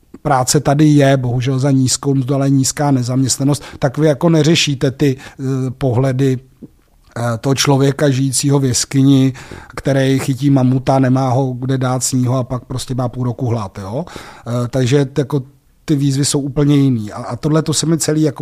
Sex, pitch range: male, 125-145 Hz